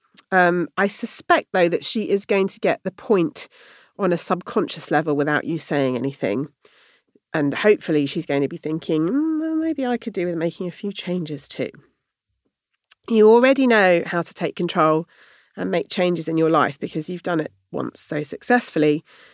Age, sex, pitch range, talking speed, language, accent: 40-59, female, 145-200 Hz, 180 wpm, English, British